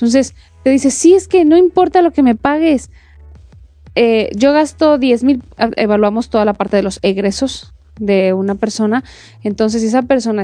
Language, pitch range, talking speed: Spanish, 190-260 Hz, 180 wpm